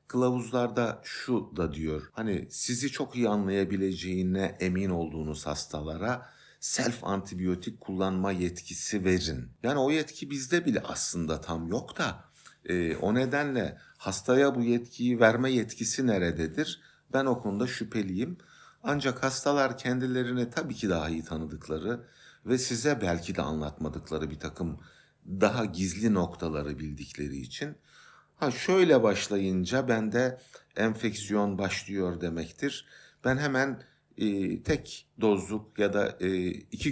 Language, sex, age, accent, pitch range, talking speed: Turkish, male, 50-69, native, 85-120 Hz, 120 wpm